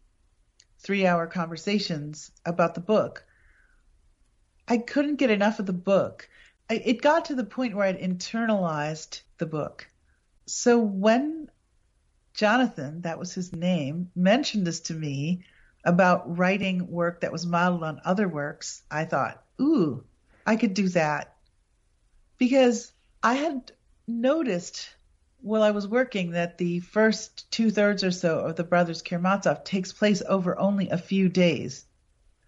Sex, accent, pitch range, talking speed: female, American, 170-215 Hz, 135 wpm